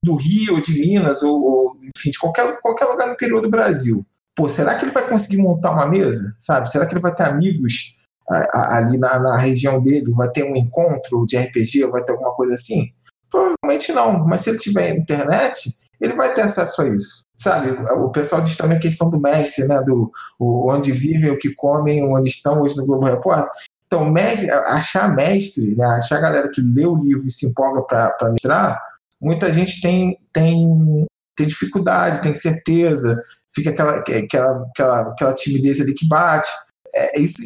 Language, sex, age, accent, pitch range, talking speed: Portuguese, male, 20-39, Brazilian, 130-175 Hz, 190 wpm